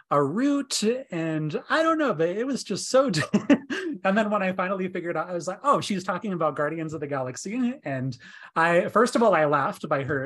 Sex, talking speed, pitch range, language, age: male, 230 wpm, 135-190 Hz, English, 30-49